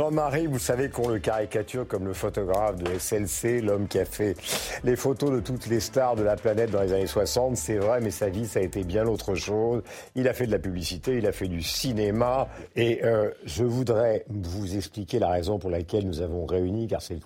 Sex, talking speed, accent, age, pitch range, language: male, 230 wpm, French, 50-69, 100-130 Hz, French